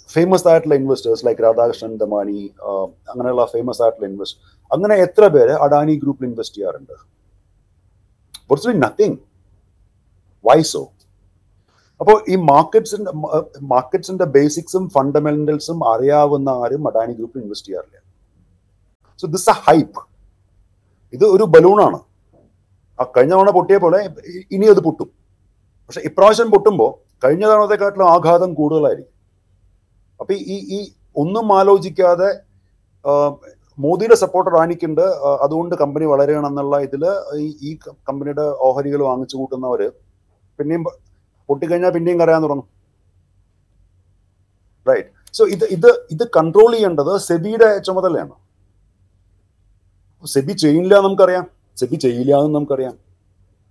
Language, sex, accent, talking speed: Malayalam, male, native, 105 wpm